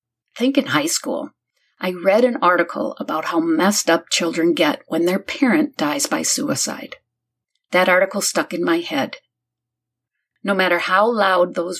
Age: 50-69